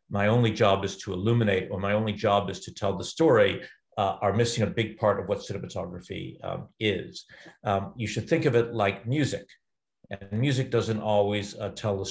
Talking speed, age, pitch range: 205 wpm, 50-69, 100-110 Hz